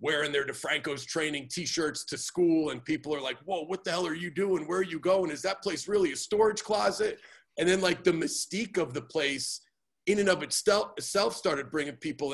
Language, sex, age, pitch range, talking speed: English, male, 40-59, 120-160 Hz, 215 wpm